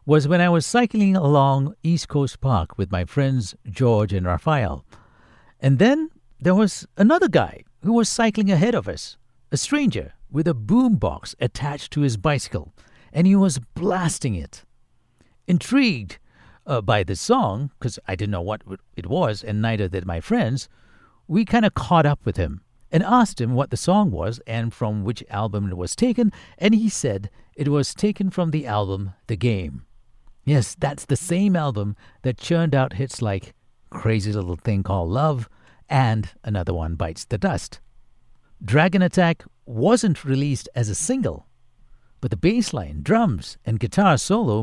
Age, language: 60-79, English